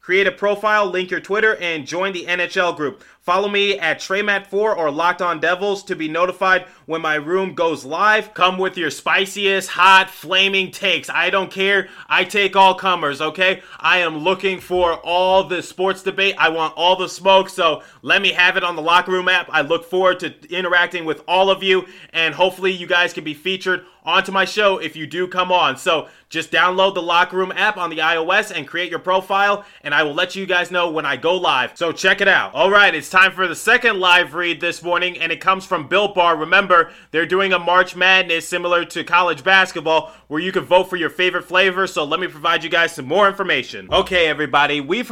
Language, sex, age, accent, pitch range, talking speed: English, male, 30-49, American, 165-190 Hz, 220 wpm